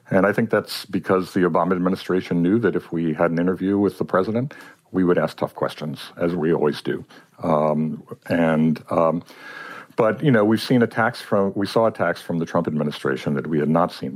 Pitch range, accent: 75-100 Hz, American